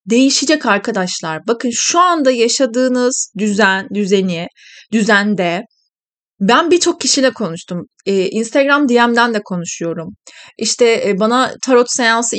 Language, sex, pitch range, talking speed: Turkish, female, 210-285 Hz, 105 wpm